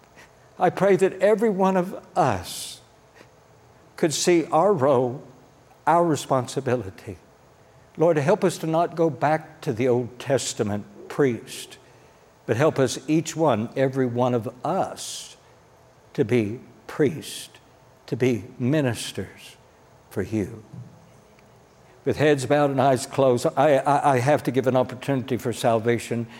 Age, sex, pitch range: 60-79, male, 120-150 Hz